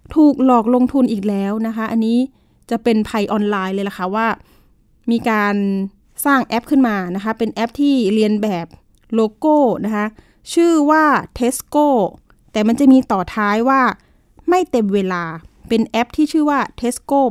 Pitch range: 205-265 Hz